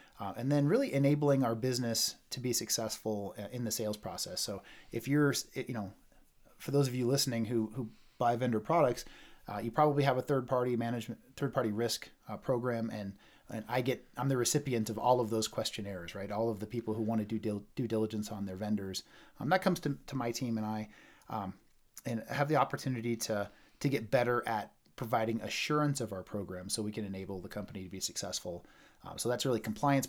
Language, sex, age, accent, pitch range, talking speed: English, male, 30-49, American, 105-130 Hz, 215 wpm